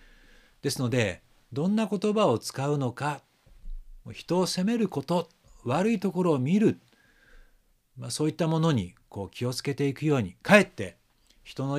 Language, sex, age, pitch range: Japanese, male, 60-79, 95-145 Hz